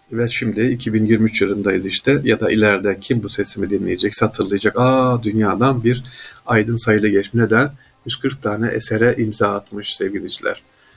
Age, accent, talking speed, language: 50-69, native, 150 wpm, Turkish